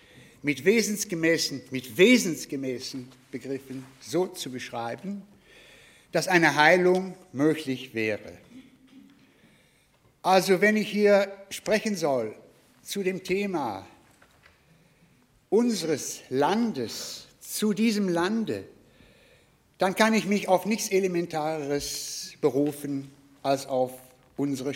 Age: 60-79